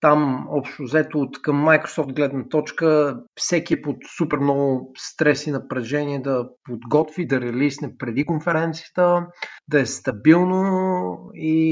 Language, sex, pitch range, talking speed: Bulgarian, male, 140-160 Hz, 135 wpm